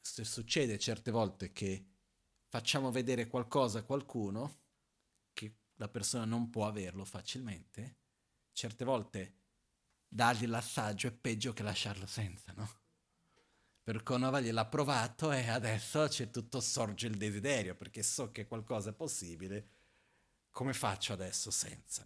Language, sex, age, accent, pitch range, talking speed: Italian, male, 40-59, native, 105-125 Hz, 130 wpm